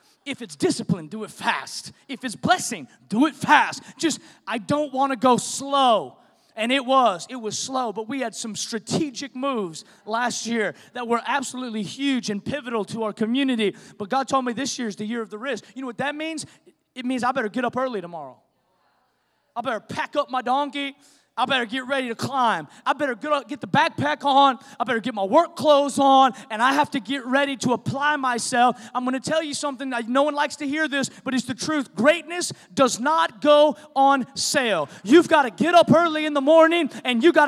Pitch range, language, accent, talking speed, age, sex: 240-295 Hz, English, American, 215 wpm, 20-39, male